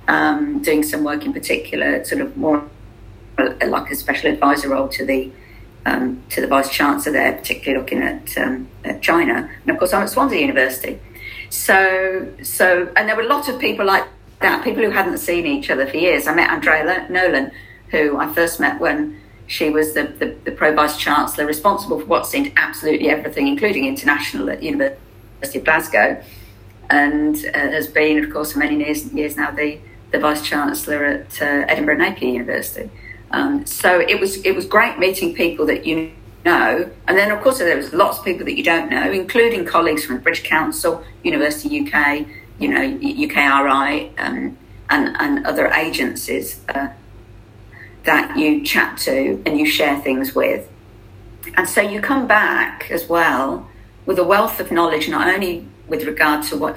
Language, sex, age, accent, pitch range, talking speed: English, female, 50-69, British, 135-200 Hz, 180 wpm